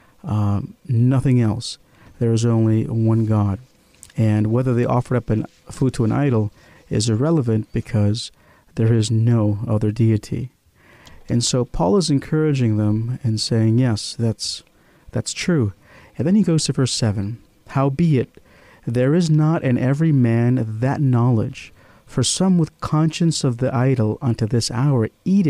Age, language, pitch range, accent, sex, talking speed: 50-69, English, 110-135 Hz, American, male, 160 wpm